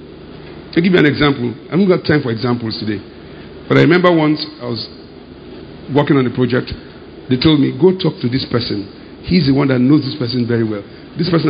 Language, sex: English, male